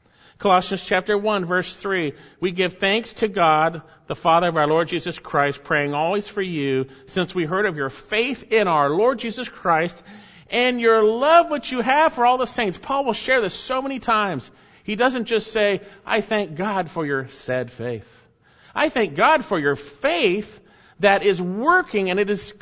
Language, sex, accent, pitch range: English, male, American, 155-225 Hz